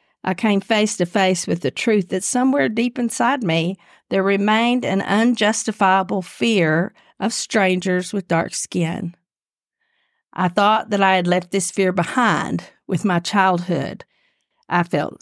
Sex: female